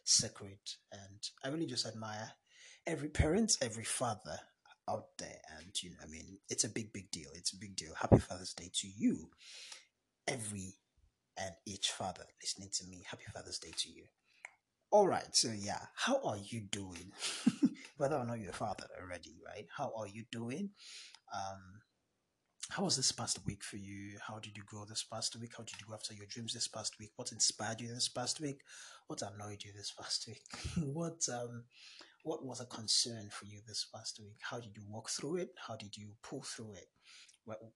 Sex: male